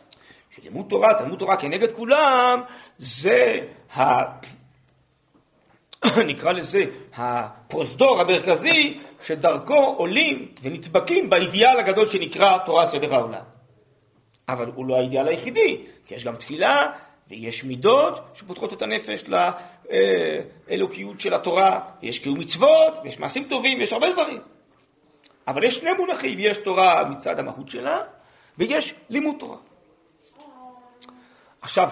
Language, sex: Hebrew, male